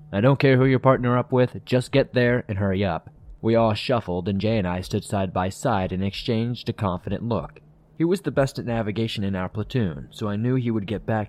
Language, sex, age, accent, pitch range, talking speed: English, male, 20-39, American, 95-125 Hz, 245 wpm